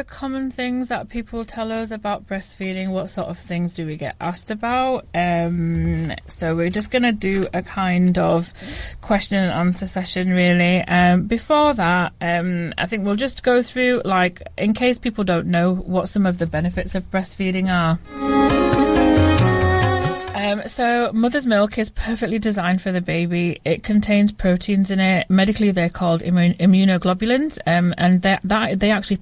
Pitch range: 175-205 Hz